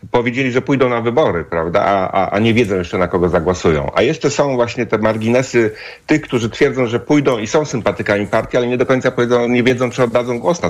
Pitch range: 100-125 Hz